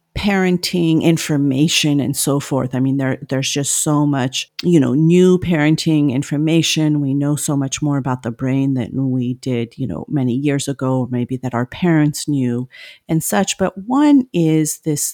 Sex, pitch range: female, 135-165 Hz